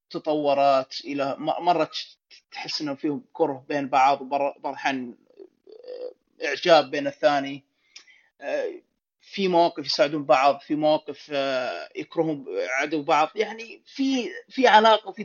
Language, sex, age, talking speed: Arabic, male, 20-39, 105 wpm